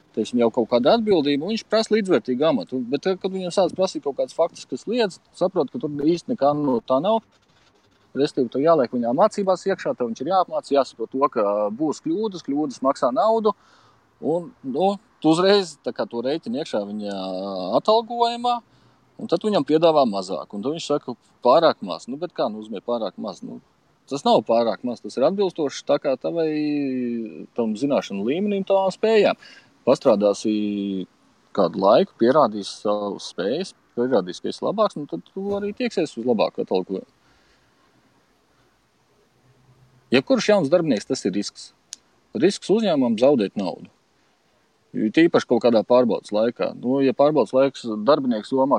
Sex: male